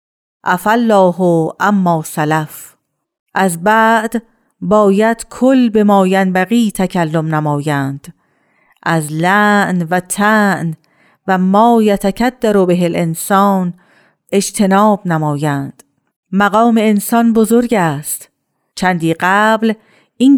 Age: 50-69